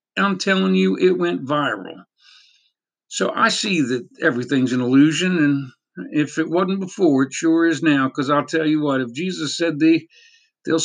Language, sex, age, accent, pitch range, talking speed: English, male, 50-69, American, 130-175 Hz, 175 wpm